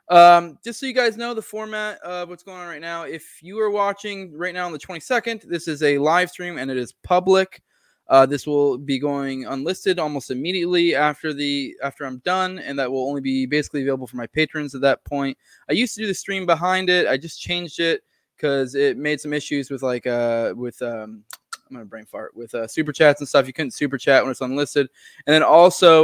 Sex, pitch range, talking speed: male, 130-170 Hz, 235 wpm